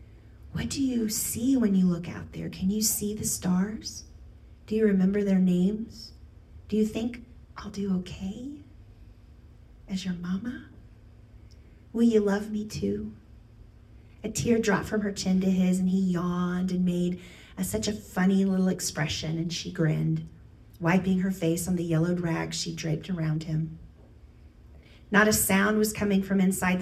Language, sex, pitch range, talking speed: English, female, 145-200 Hz, 160 wpm